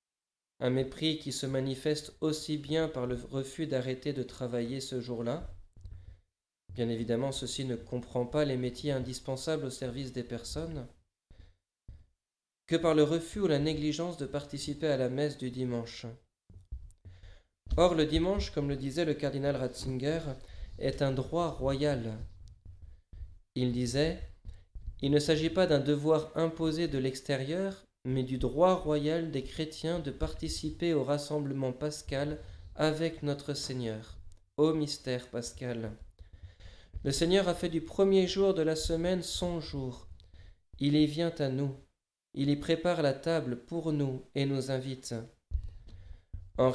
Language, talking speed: French, 140 wpm